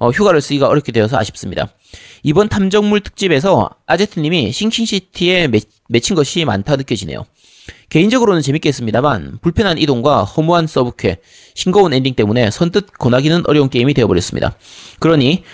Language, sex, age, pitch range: Korean, male, 30-49, 115-170 Hz